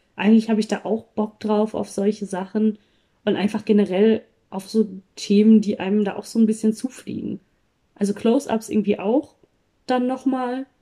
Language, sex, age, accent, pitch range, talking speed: German, female, 20-39, German, 195-220 Hz, 165 wpm